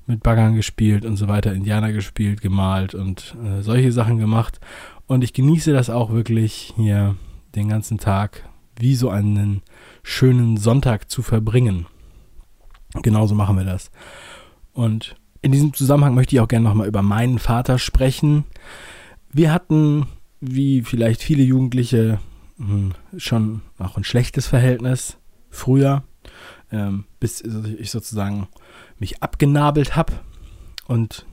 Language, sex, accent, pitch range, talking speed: German, male, German, 105-130 Hz, 130 wpm